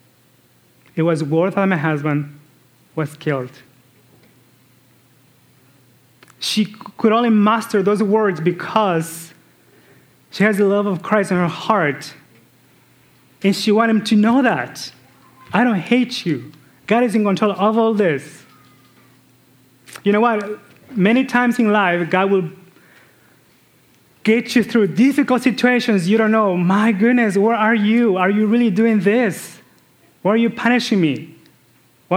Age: 30-49